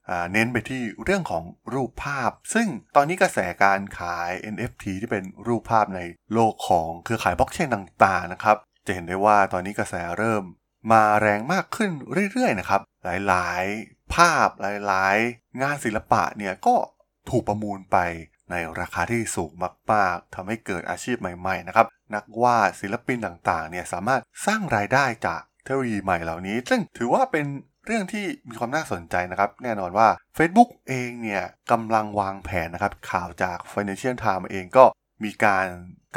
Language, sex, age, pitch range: Thai, male, 20-39, 95-120 Hz